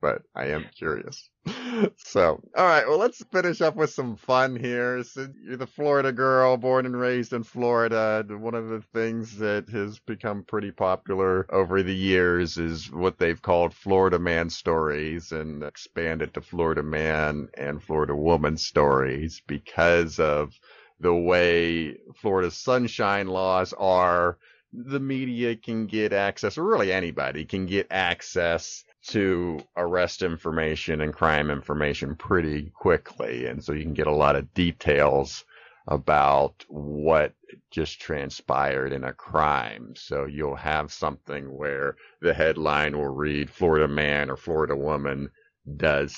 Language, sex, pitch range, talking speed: English, male, 75-110 Hz, 145 wpm